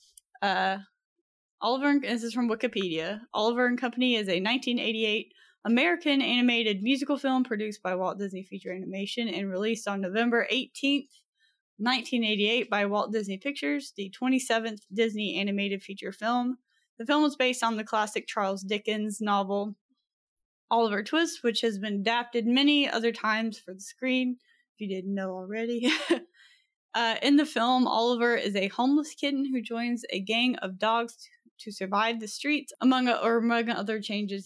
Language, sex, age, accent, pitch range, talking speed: English, female, 10-29, American, 200-245 Hz, 155 wpm